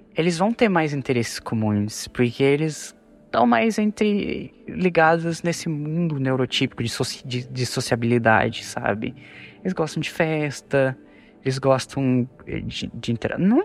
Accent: Brazilian